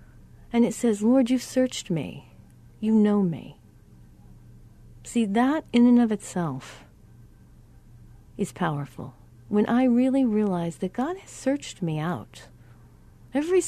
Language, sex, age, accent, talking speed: English, female, 40-59, American, 125 wpm